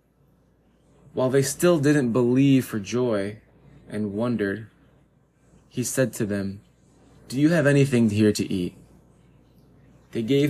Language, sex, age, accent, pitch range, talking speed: English, male, 20-39, American, 105-135 Hz, 125 wpm